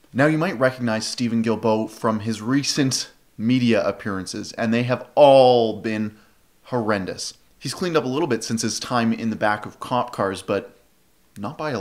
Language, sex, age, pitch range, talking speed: English, male, 30-49, 110-130 Hz, 185 wpm